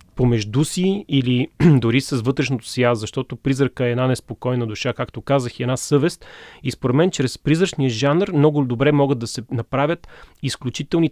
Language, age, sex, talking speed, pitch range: Bulgarian, 30-49, male, 180 wpm, 120-150 Hz